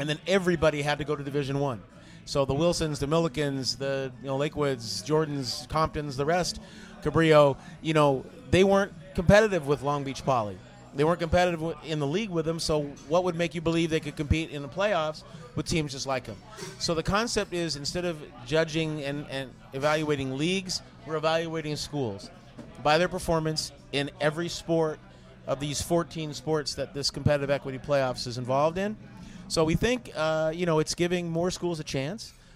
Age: 30-49